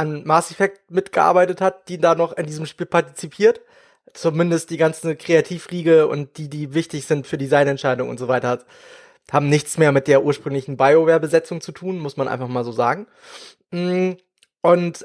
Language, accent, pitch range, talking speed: German, German, 150-195 Hz, 170 wpm